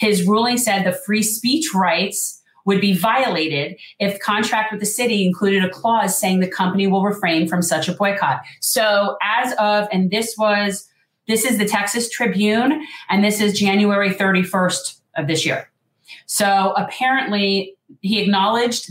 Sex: female